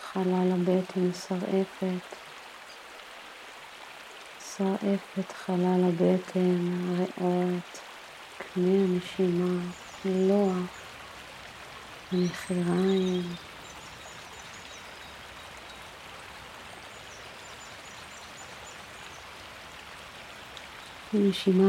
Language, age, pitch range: Hebrew, 50-69, 180-195 Hz